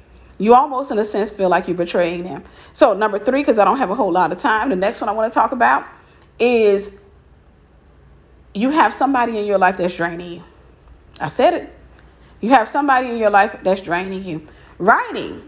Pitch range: 220-340 Hz